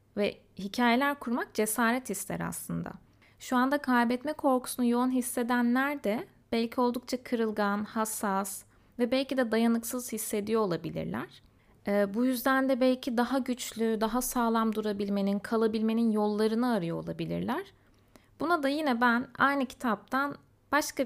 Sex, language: female, Turkish